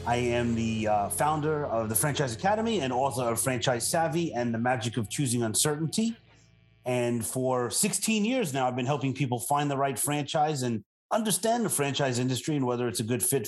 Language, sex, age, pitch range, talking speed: English, male, 30-49, 115-145 Hz, 195 wpm